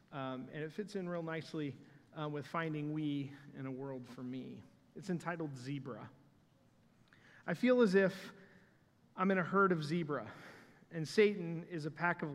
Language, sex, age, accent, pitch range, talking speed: English, male, 40-59, American, 140-175 Hz, 170 wpm